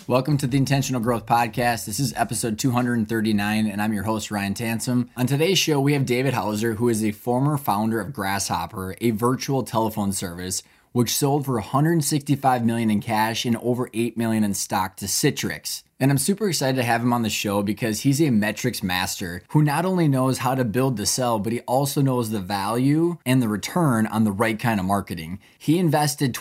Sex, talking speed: male, 205 wpm